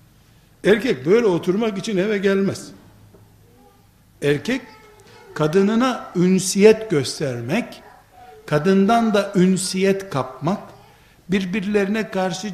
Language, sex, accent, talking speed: Turkish, male, native, 75 wpm